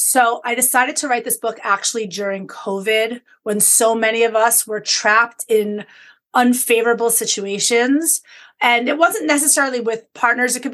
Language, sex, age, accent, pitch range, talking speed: English, female, 30-49, American, 220-260 Hz, 155 wpm